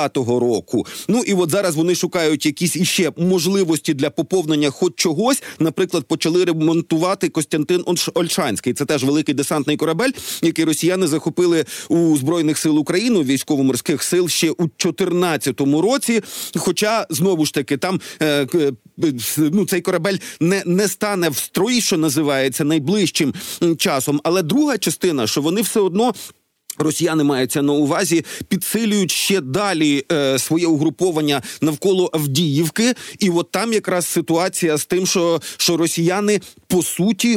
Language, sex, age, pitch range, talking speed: Ukrainian, male, 40-59, 150-190 Hz, 140 wpm